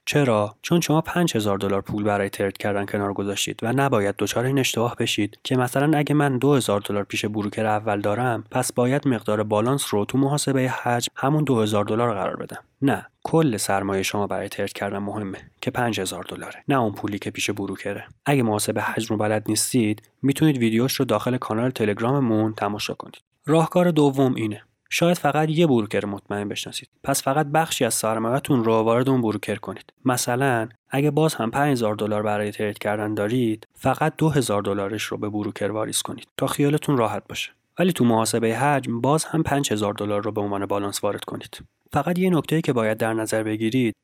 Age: 30-49